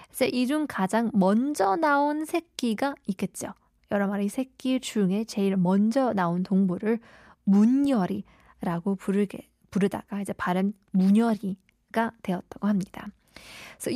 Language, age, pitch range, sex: Korean, 20-39, 190-250 Hz, female